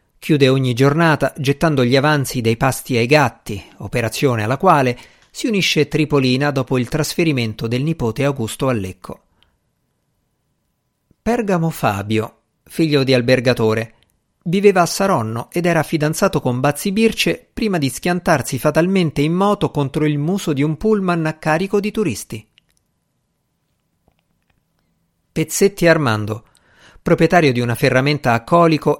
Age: 50-69